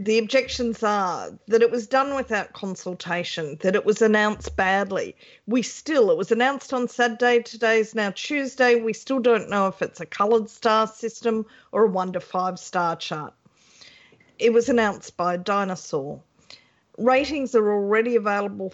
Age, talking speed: 40-59, 155 wpm